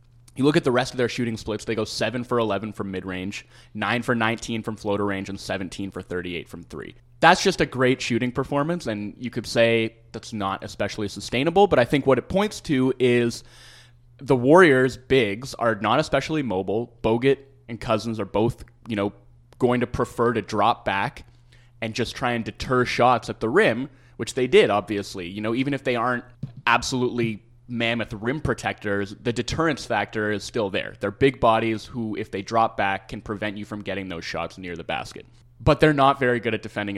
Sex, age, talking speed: male, 20-39, 200 wpm